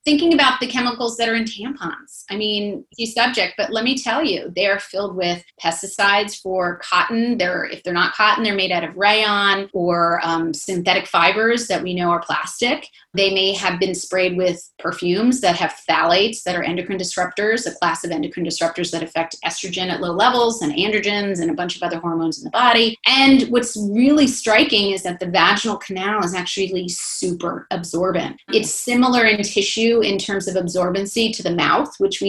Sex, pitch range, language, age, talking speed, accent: female, 180-225 Hz, English, 30-49, 195 wpm, American